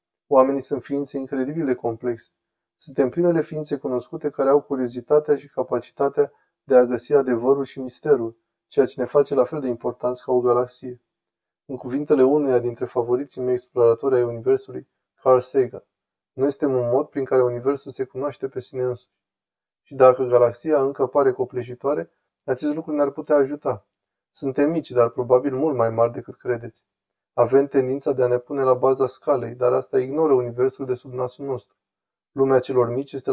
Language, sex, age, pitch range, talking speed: Romanian, male, 20-39, 120-140 Hz, 175 wpm